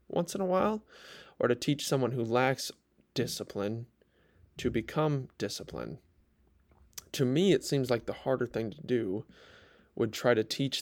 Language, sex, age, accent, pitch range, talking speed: English, male, 20-39, American, 115-140 Hz, 155 wpm